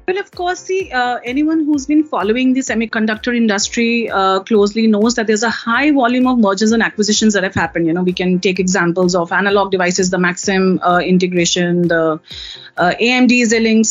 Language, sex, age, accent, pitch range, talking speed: English, female, 30-49, Indian, 200-260 Hz, 185 wpm